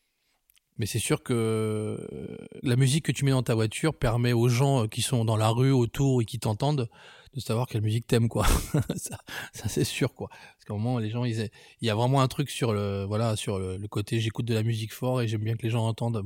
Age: 20-39